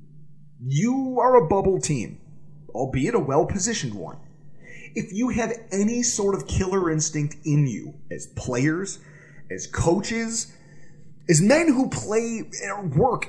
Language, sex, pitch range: English, male, 150-205 Hz